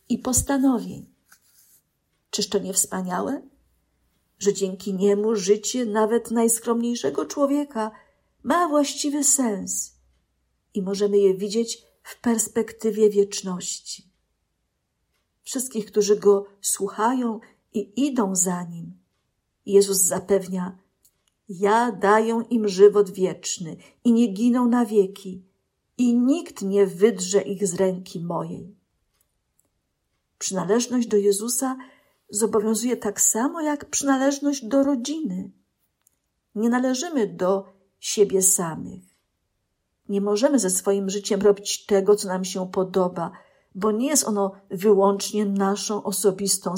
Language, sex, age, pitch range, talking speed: Polish, female, 50-69, 195-235 Hz, 110 wpm